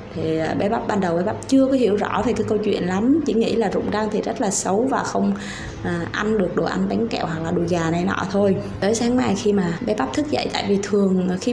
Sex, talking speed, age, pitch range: female, 280 wpm, 20-39, 195-240 Hz